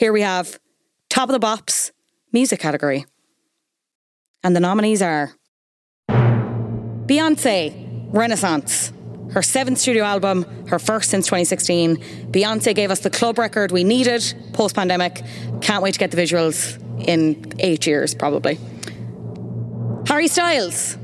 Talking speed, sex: 125 wpm, female